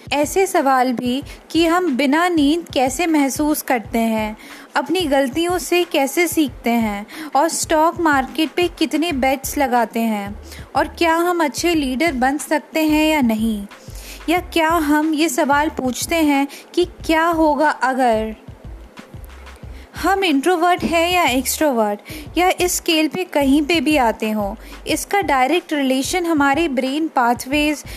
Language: Hindi